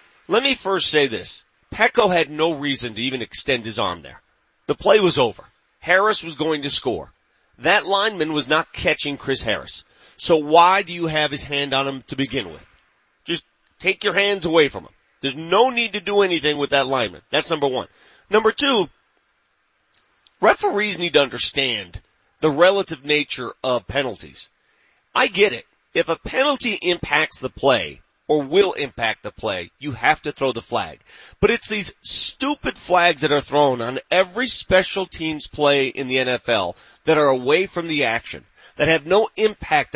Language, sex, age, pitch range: English, male, 40-59, 145-200 Hz